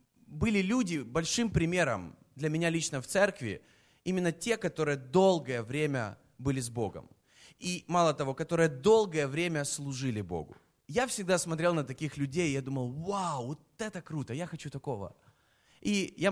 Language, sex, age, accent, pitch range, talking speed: Russian, male, 20-39, native, 140-190 Hz, 155 wpm